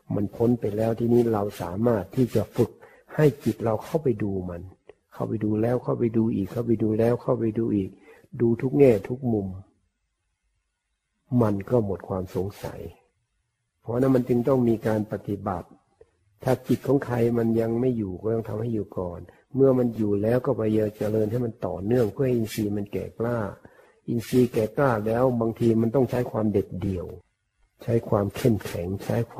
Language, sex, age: Thai, male, 60-79